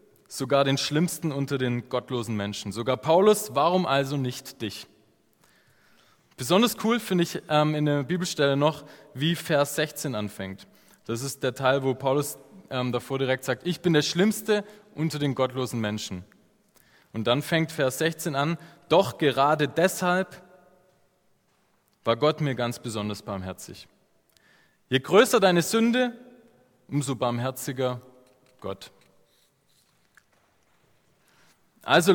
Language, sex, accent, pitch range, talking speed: German, male, German, 125-180 Hz, 125 wpm